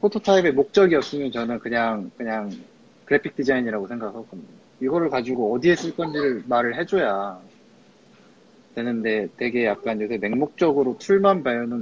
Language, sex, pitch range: Korean, male, 115-165 Hz